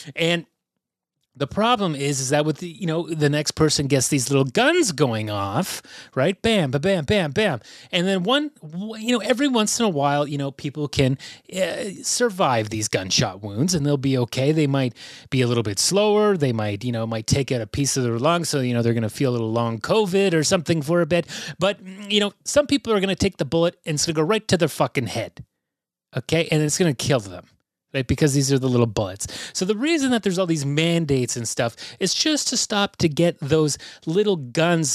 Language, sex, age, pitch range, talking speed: English, male, 30-49, 135-190 Hz, 230 wpm